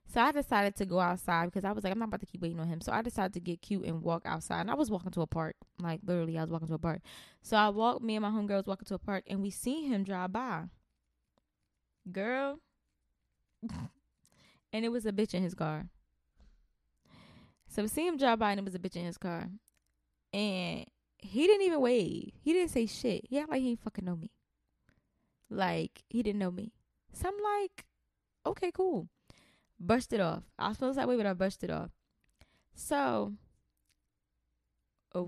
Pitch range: 165-220 Hz